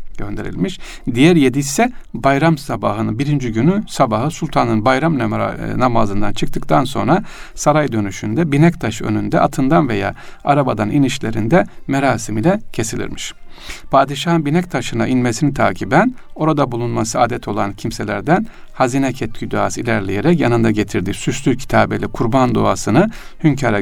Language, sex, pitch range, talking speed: Turkish, male, 110-155 Hz, 115 wpm